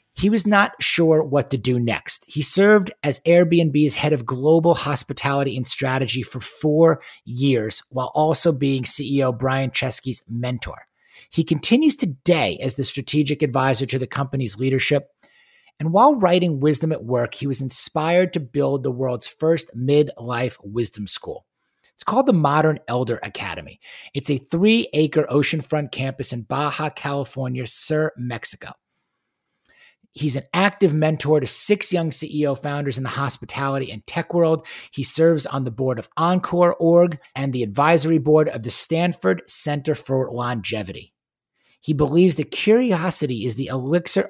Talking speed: 150 wpm